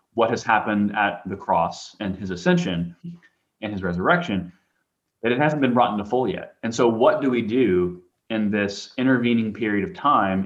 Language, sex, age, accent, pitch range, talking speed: English, male, 20-39, American, 100-125 Hz, 185 wpm